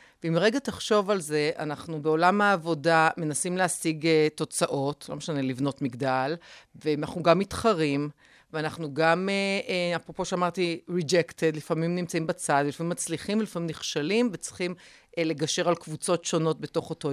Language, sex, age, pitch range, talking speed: Hebrew, female, 40-59, 155-205 Hz, 130 wpm